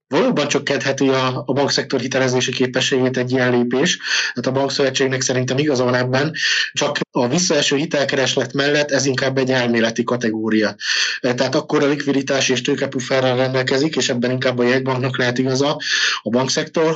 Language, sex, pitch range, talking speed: Hungarian, male, 120-140 Hz, 150 wpm